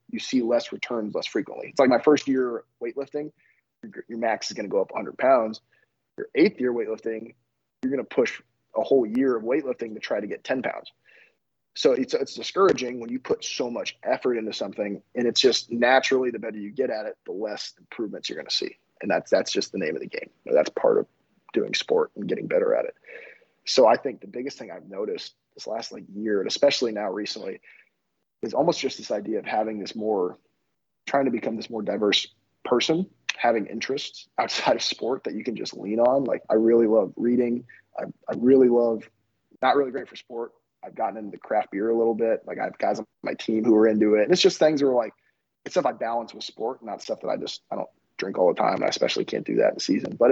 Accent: American